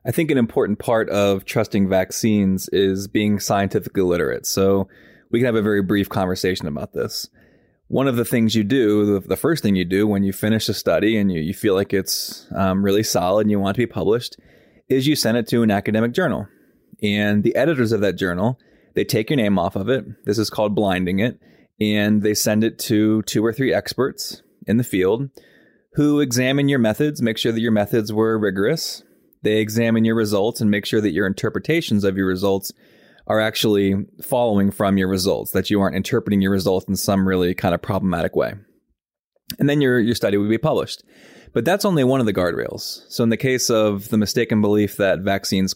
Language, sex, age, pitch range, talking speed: English, male, 20-39, 100-120 Hz, 210 wpm